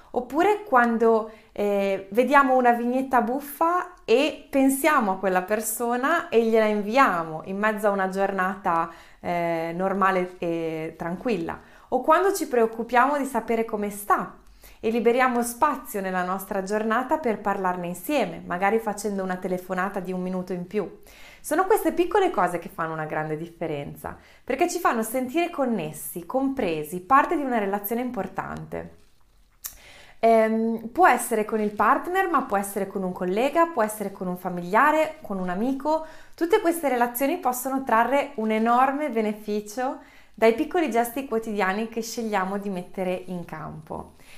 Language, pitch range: Italian, 190-265 Hz